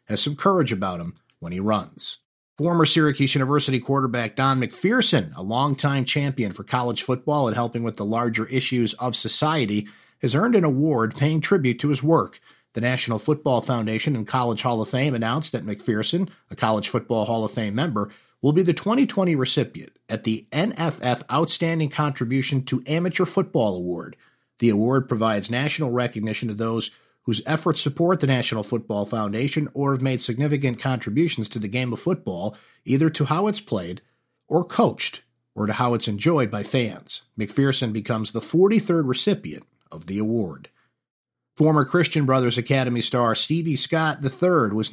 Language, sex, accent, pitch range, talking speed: English, male, American, 115-155 Hz, 165 wpm